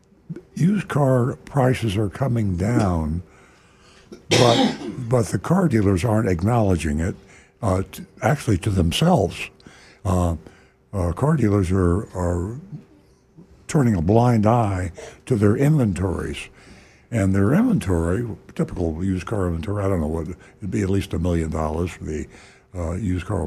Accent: American